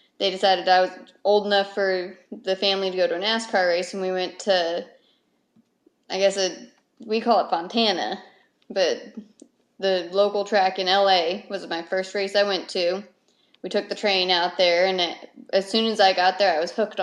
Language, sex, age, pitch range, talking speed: English, female, 20-39, 185-205 Hz, 190 wpm